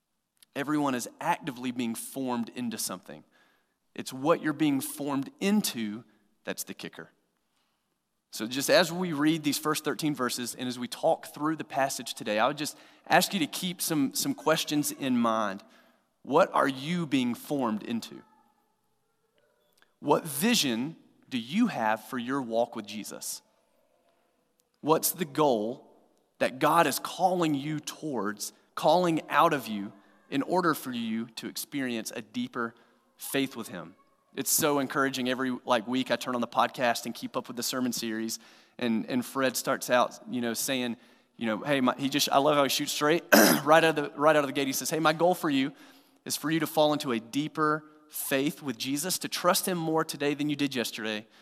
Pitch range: 120-155 Hz